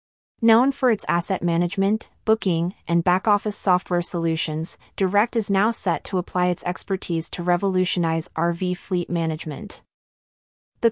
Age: 30-49